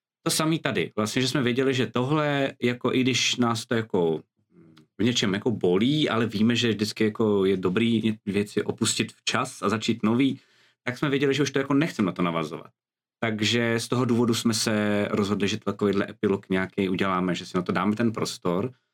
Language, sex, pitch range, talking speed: Czech, male, 110-135 Hz, 195 wpm